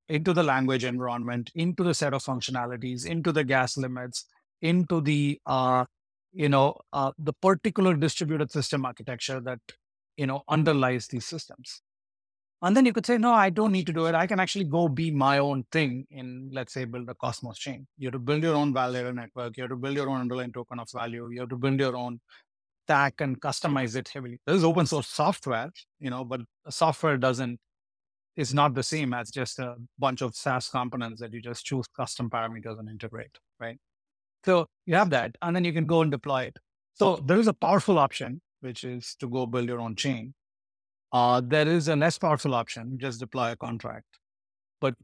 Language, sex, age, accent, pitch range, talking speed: English, male, 30-49, Indian, 125-160 Hz, 205 wpm